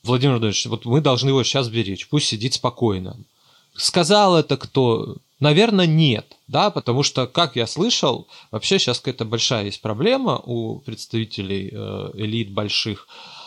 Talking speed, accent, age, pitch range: 145 wpm, native, 30-49, 110-145 Hz